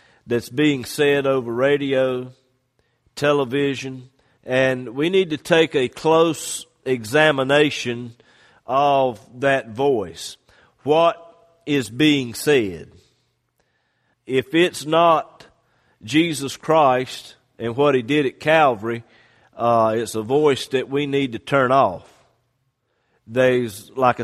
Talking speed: 110 wpm